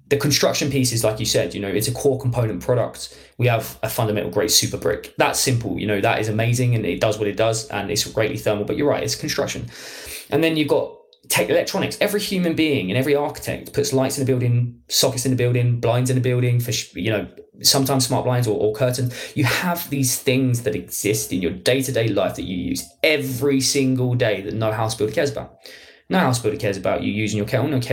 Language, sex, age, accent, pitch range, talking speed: English, male, 20-39, British, 110-140 Hz, 230 wpm